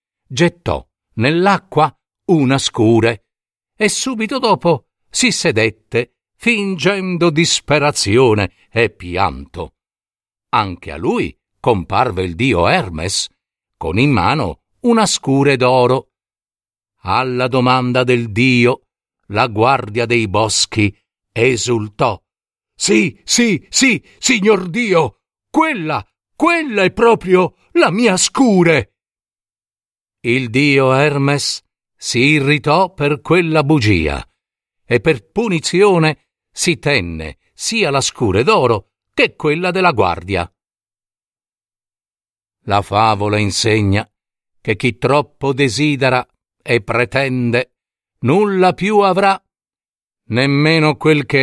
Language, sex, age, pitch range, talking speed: Italian, male, 50-69, 110-170 Hz, 95 wpm